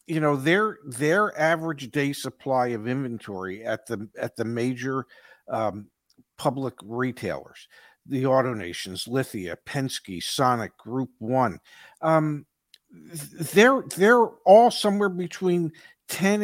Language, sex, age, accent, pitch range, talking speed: English, male, 50-69, American, 140-195 Hz, 115 wpm